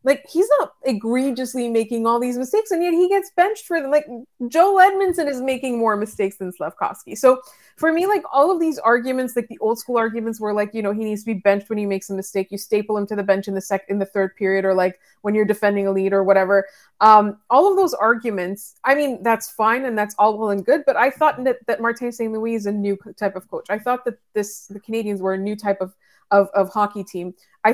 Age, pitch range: 20-39, 210-285 Hz